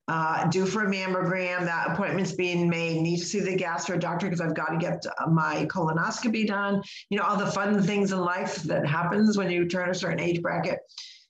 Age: 50-69